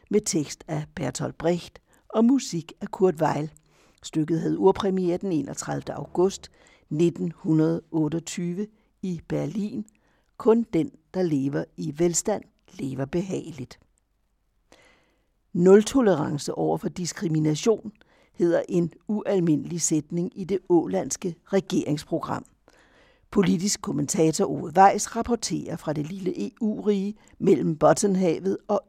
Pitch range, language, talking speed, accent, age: 160-200 Hz, Danish, 105 wpm, native, 60-79